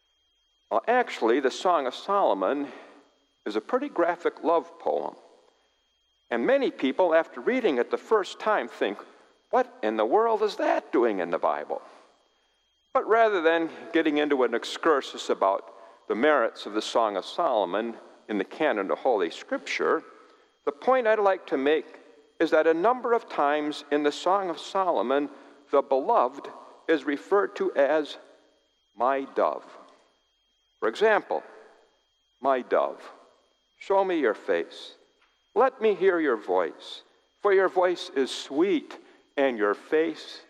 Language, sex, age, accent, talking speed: English, male, 60-79, American, 145 wpm